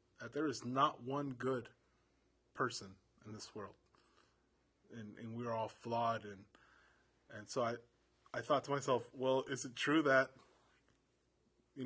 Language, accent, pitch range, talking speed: English, American, 115-135 Hz, 145 wpm